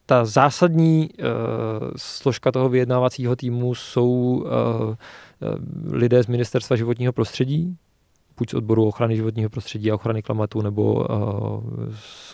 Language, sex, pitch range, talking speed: Czech, male, 110-135 Hz, 125 wpm